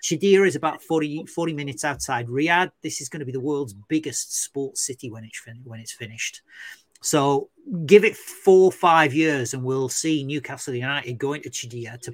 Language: English